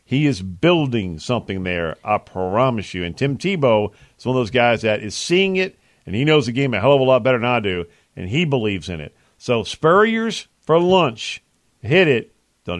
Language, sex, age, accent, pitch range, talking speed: English, male, 50-69, American, 105-140 Hz, 215 wpm